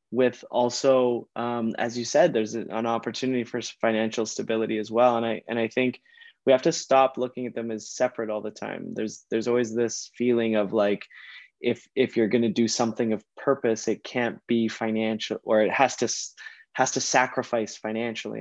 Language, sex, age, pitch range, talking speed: English, male, 20-39, 110-120 Hz, 190 wpm